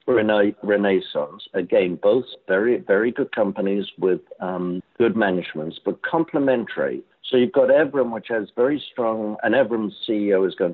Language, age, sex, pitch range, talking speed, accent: English, 60-79, male, 85-115 Hz, 145 wpm, British